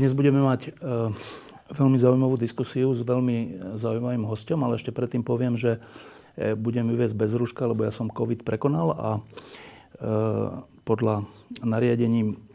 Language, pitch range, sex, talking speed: Slovak, 110-125 Hz, male, 135 wpm